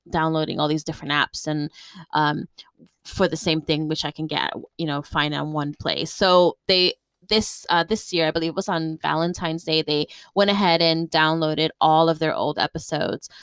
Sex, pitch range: female, 160-195 Hz